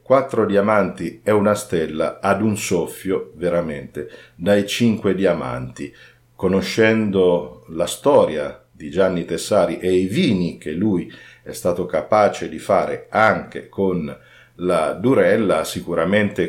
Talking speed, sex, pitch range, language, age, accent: 120 wpm, male, 85-105 Hz, Italian, 50-69, native